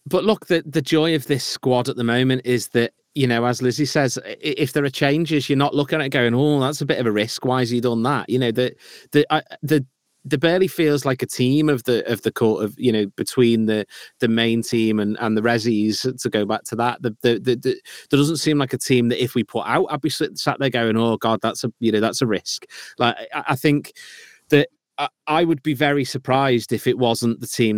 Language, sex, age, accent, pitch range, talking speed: English, male, 30-49, British, 115-140 Hz, 260 wpm